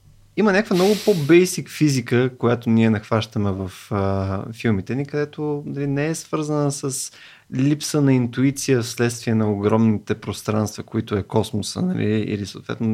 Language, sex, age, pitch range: Bulgarian, male, 20-39, 110-145 Hz